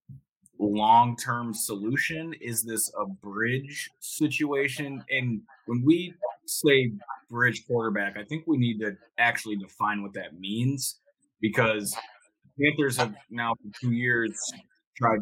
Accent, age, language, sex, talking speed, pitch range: American, 20-39, English, male, 120 wpm, 105-125 Hz